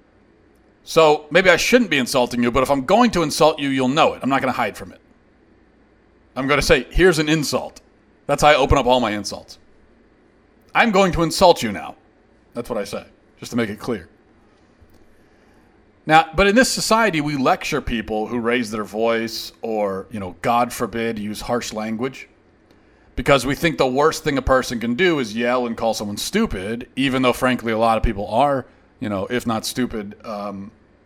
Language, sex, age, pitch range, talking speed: English, male, 40-59, 110-155 Hz, 200 wpm